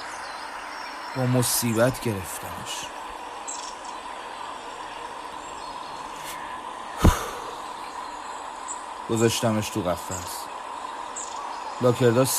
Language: Persian